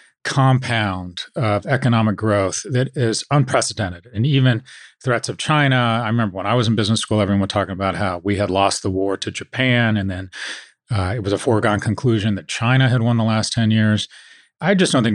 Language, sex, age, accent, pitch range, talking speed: English, male, 40-59, American, 100-120 Hz, 205 wpm